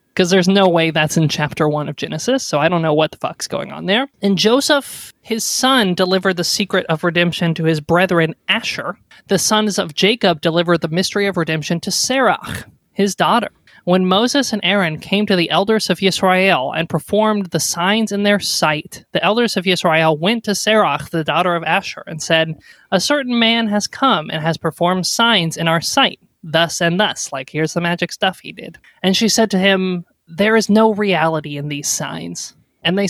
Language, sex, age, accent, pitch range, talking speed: English, male, 20-39, American, 160-205 Hz, 205 wpm